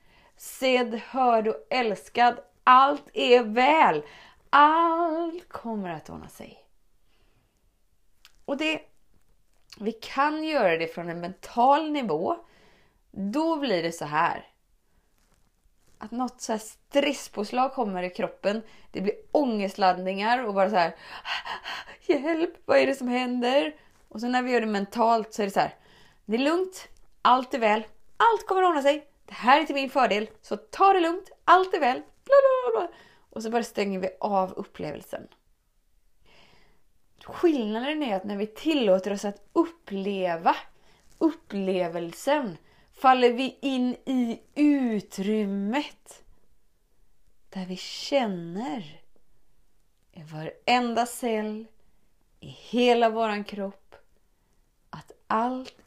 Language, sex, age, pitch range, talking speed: Swedish, female, 30-49, 200-285 Hz, 125 wpm